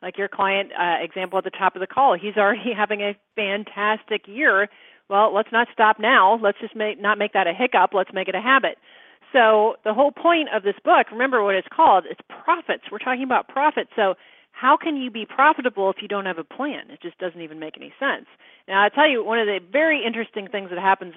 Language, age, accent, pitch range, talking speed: English, 40-59, American, 195-250 Hz, 230 wpm